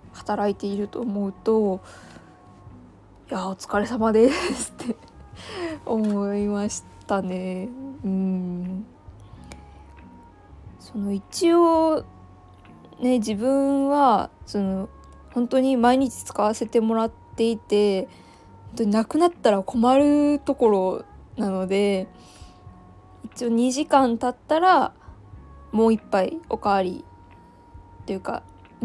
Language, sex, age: Japanese, female, 20-39